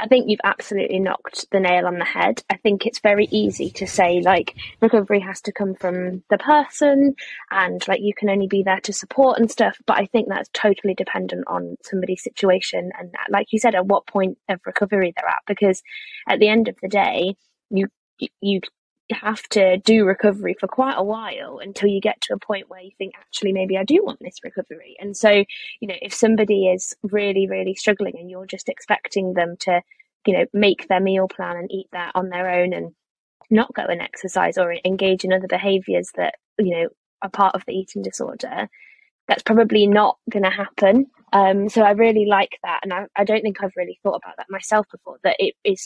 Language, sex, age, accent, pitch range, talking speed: English, female, 20-39, British, 185-215 Hz, 215 wpm